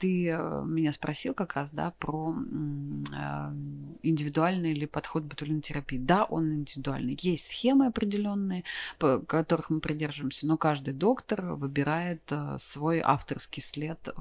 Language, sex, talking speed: Russian, female, 125 wpm